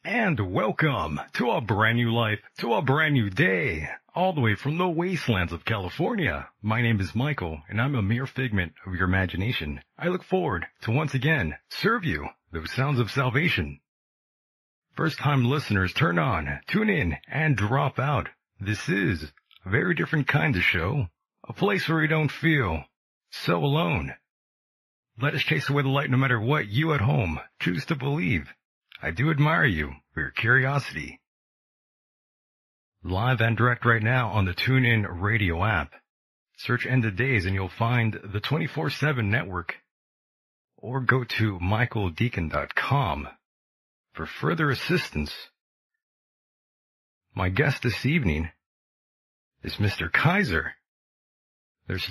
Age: 40-59